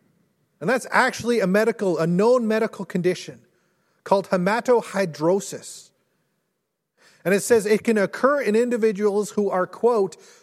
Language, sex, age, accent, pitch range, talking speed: English, male, 40-59, American, 165-215 Hz, 125 wpm